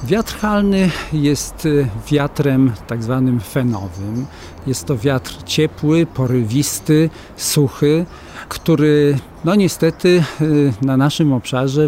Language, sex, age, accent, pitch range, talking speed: English, male, 50-69, Polish, 120-155 Hz, 90 wpm